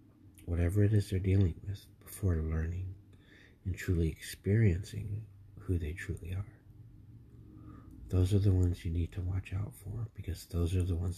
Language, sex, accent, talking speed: English, male, American, 160 wpm